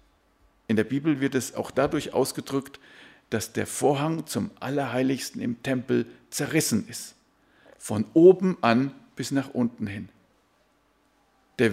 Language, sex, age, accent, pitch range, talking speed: German, male, 50-69, German, 110-135 Hz, 130 wpm